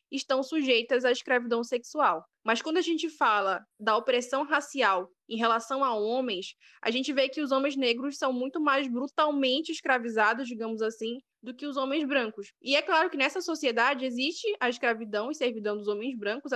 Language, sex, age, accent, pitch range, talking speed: Portuguese, female, 10-29, Brazilian, 235-300 Hz, 180 wpm